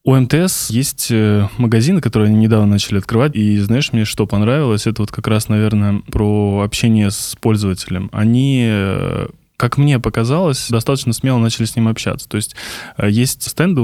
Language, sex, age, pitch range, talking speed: Russian, male, 20-39, 105-120 Hz, 160 wpm